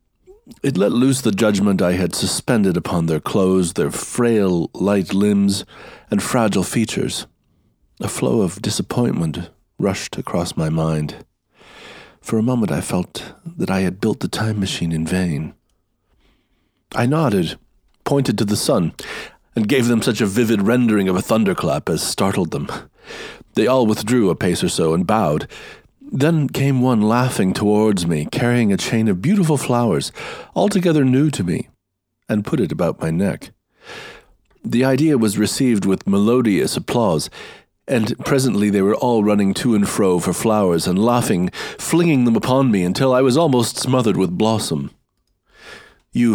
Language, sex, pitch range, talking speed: English, male, 95-125 Hz, 160 wpm